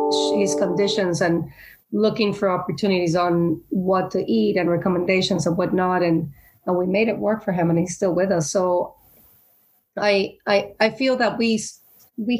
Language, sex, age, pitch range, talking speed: German, female, 30-49, 170-205 Hz, 170 wpm